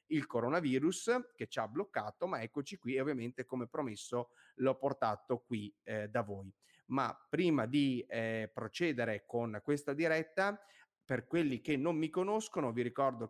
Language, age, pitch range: Italian, 30-49, 115-150 Hz